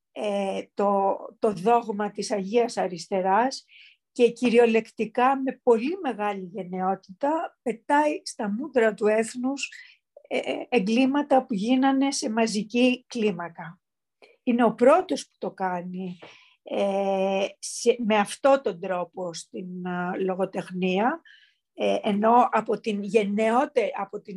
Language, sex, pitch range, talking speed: Greek, female, 205-270 Hz, 105 wpm